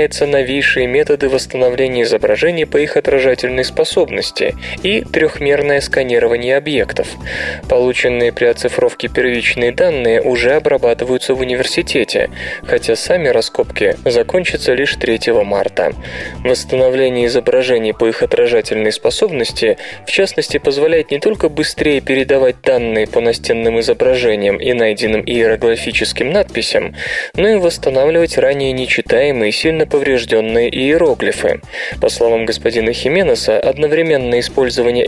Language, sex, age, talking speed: Russian, male, 20-39, 110 wpm